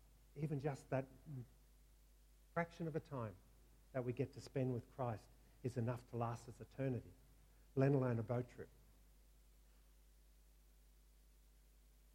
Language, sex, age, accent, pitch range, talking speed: English, male, 50-69, Australian, 110-135 Hz, 130 wpm